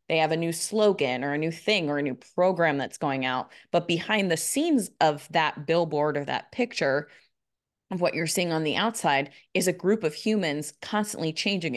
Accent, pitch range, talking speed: American, 150-190 Hz, 205 wpm